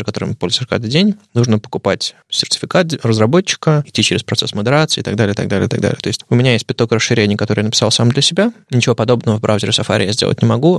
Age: 20-39